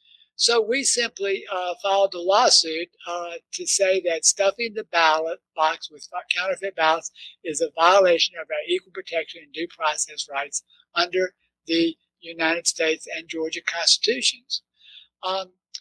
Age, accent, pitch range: 60-79, American, 190-295 Hz